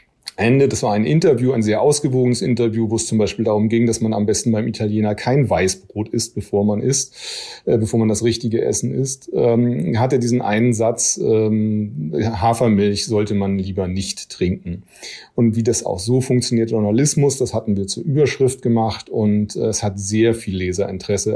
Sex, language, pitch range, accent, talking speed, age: male, German, 100-120 Hz, German, 185 wpm, 40-59